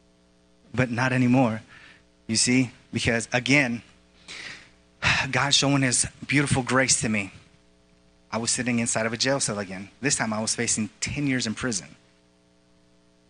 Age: 30-49